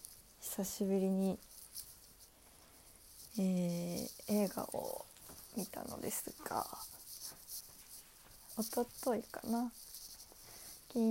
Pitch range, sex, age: 190-225 Hz, female, 20-39